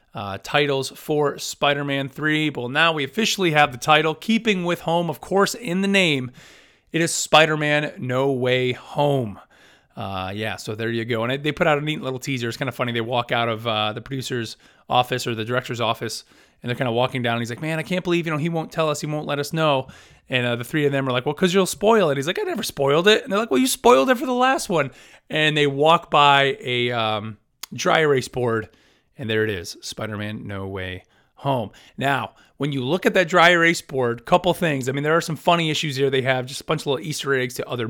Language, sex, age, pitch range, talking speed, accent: English, male, 30-49, 125-160 Hz, 250 wpm, American